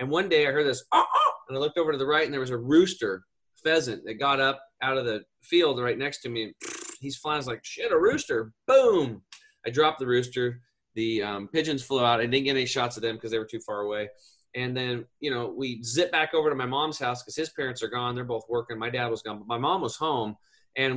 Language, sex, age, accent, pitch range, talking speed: English, male, 30-49, American, 120-170 Hz, 275 wpm